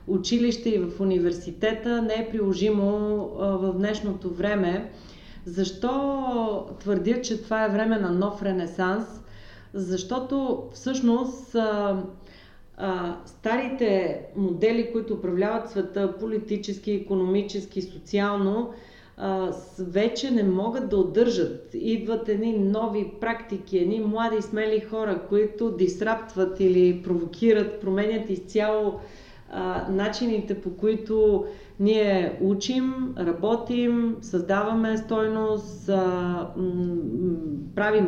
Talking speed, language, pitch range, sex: 90 wpm, Bulgarian, 190-230 Hz, female